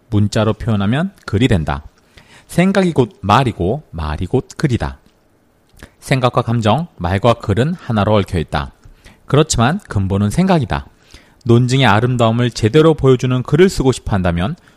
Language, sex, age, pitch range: Korean, male, 40-59, 105-145 Hz